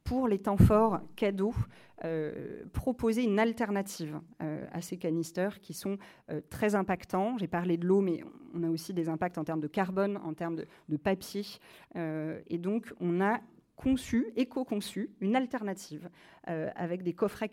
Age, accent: 30-49, French